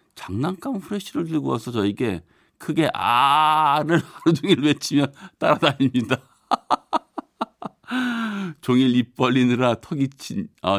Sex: male